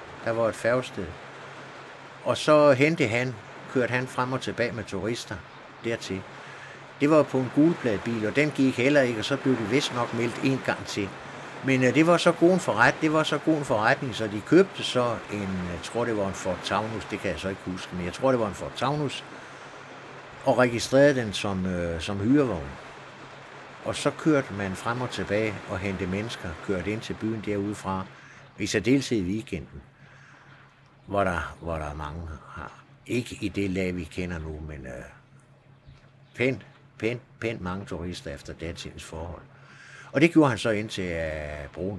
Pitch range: 90-135 Hz